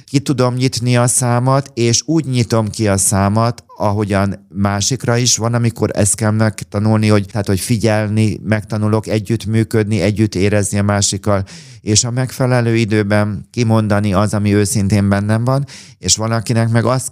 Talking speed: 155 wpm